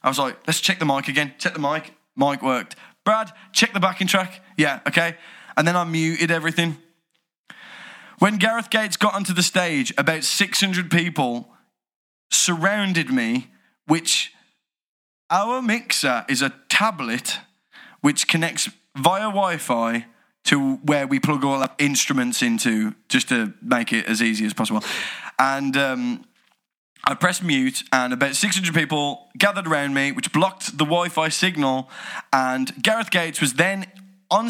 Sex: male